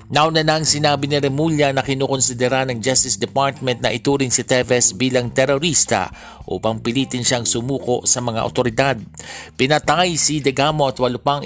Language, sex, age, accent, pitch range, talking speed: Filipino, male, 50-69, native, 115-135 Hz, 155 wpm